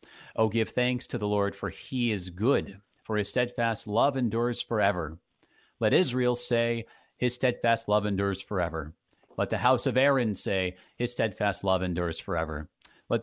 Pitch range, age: 95-125 Hz, 40-59